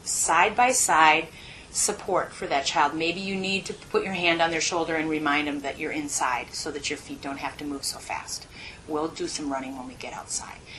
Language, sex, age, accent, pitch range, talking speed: English, female, 30-49, American, 155-200 Hz, 215 wpm